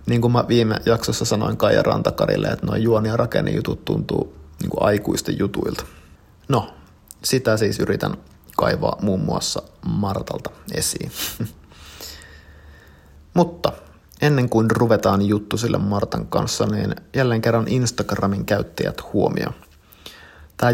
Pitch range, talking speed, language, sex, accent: 95-120 Hz, 120 wpm, Finnish, male, native